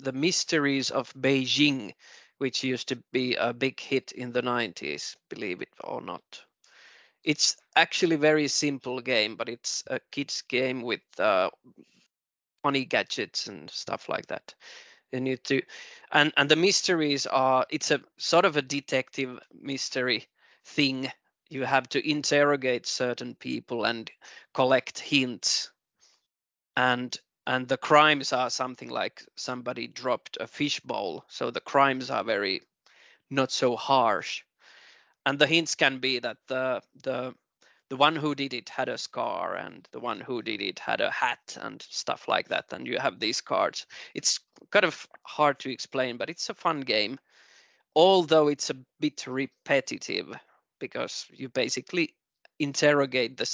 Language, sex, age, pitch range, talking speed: Finnish, male, 20-39, 125-145 Hz, 150 wpm